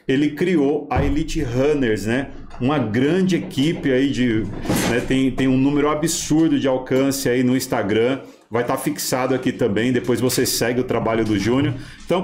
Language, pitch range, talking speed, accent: Portuguese, 115-140 Hz, 175 wpm, Brazilian